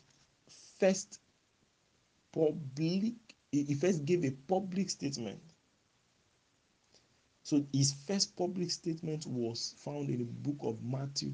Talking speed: 105 wpm